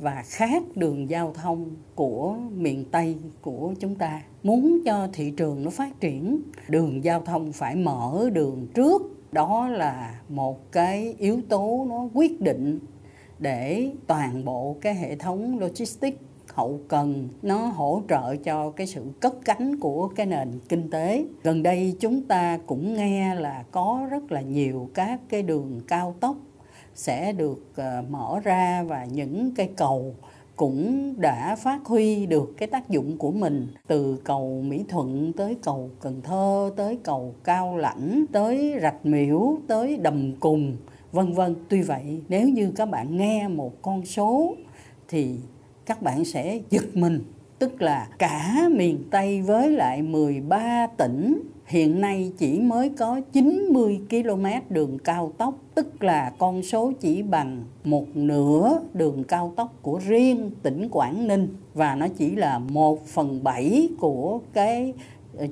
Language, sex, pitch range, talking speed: Vietnamese, female, 145-220 Hz, 155 wpm